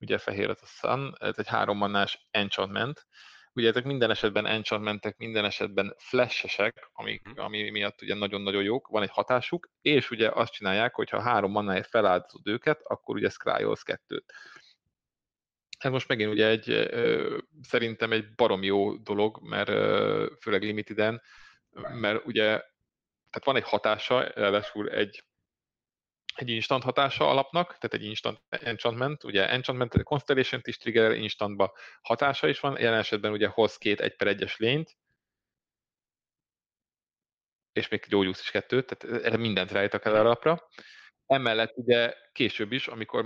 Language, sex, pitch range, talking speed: Hungarian, male, 105-135 Hz, 145 wpm